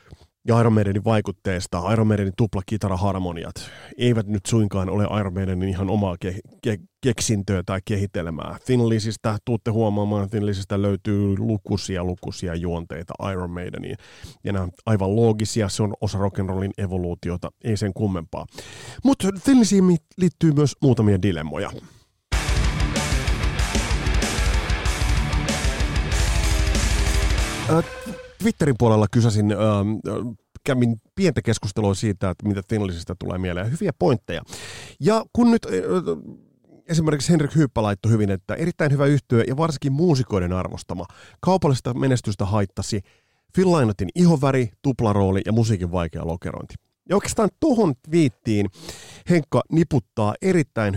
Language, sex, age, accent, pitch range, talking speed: Finnish, male, 30-49, native, 95-125 Hz, 115 wpm